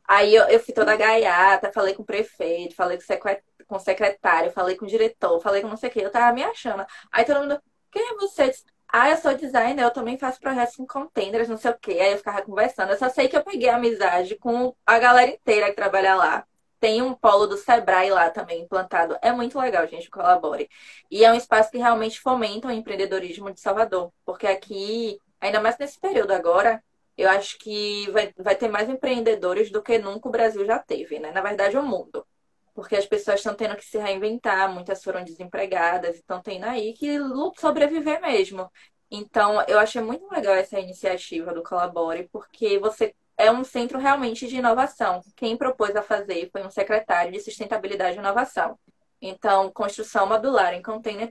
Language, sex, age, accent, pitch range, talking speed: Portuguese, female, 20-39, Brazilian, 195-240 Hz, 195 wpm